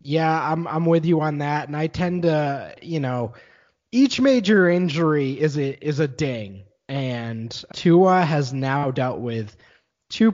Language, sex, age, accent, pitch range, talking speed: English, male, 20-39, American, 125-165 Hz, 165 wpm